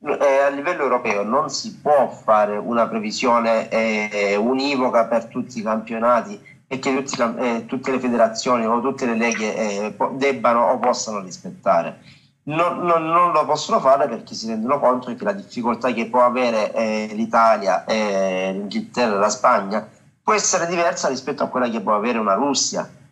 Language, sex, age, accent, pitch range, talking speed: Italian, male, 40-59, native, 115-140 Hz, 165 wpm